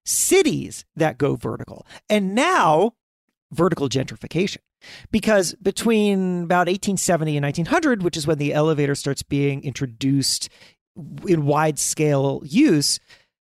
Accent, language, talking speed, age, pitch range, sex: American, English, 110 wpm, 40-59, 155-245 Hz, male